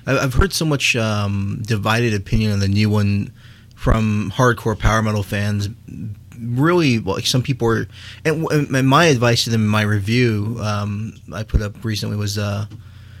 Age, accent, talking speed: 20-39, American, 175 wpm